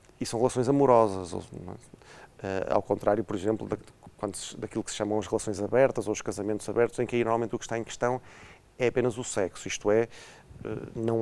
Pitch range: 105-125 Hz